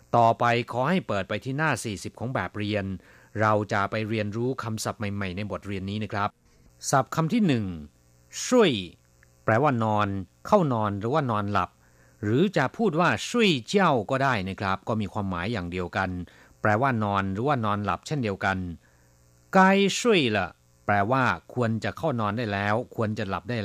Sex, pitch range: male, 95-135 Hz